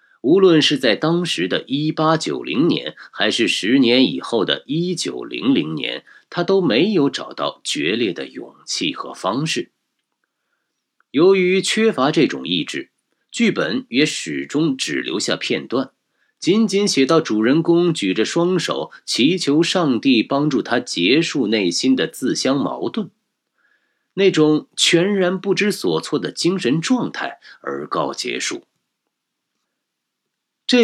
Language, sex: Chinese, male